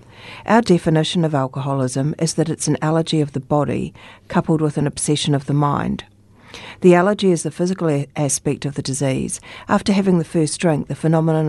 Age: 50-69